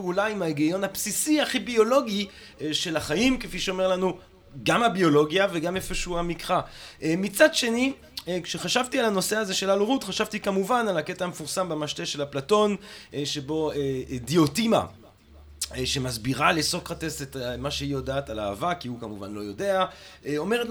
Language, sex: Hebrew, male